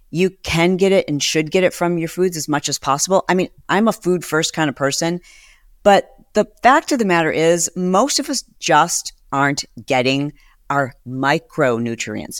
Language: English